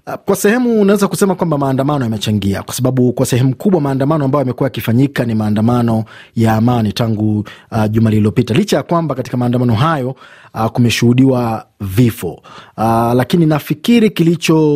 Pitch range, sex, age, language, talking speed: 120-145 Hz, male, 30-49, Swahili, 145 wpm